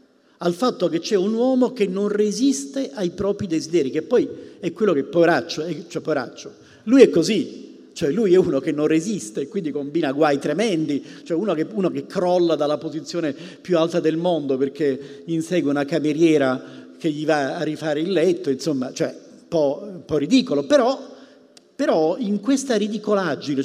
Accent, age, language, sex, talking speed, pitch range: native, 50-69, Italian, male, 175 wpm, 155-235 Hz